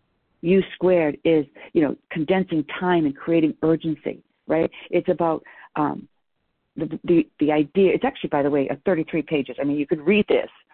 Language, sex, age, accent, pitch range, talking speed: English, female, 50-69, American, 155-185 Hz, 180 wpm